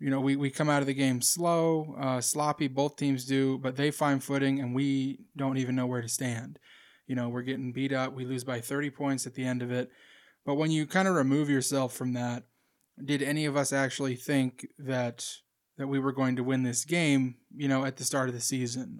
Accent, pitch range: American, 130-140 Hz